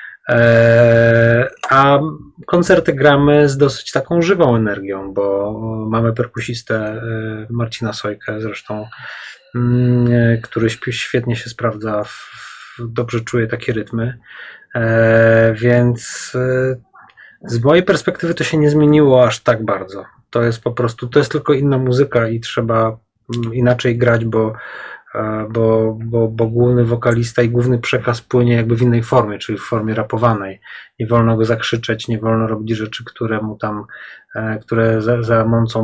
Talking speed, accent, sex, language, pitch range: 130 wpm, native, male, Polish, 110-125 Hz